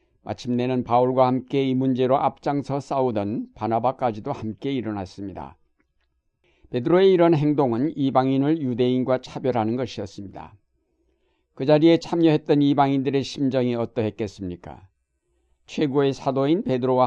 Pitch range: 115-140 Hz